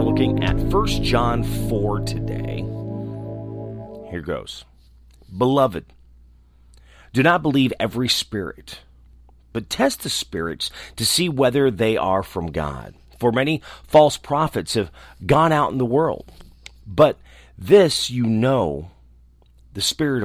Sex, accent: male, American